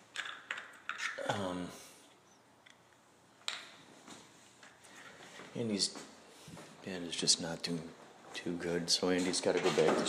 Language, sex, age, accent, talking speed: English, male, 40-59, American, 90 wpm